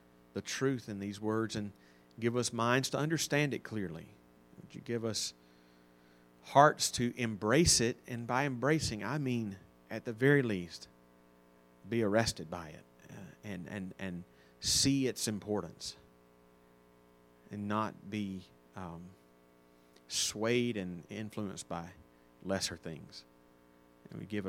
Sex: male